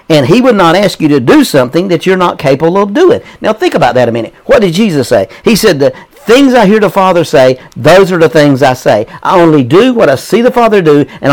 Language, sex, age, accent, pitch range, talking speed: English, male, 50-69, American, 155-235 Hz, 265 wpm